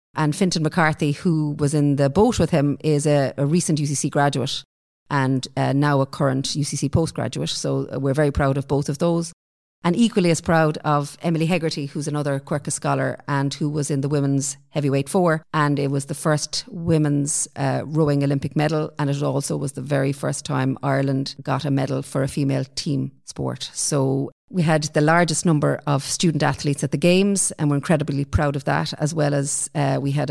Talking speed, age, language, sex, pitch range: 200 wpm, 40-59, English, female, 140-160 Hz